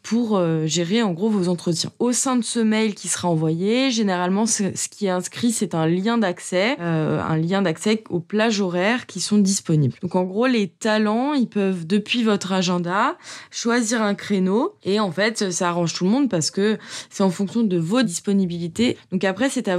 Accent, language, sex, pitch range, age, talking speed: French, French, female, 180-225 Hz, 20-39, 200 wpm